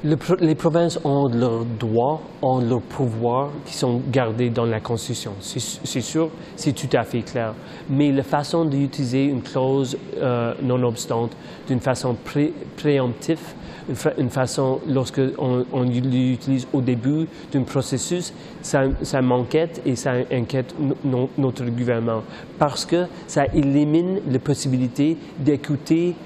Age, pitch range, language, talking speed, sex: 30-49, 130-155 Hz, French, 140 wpm, male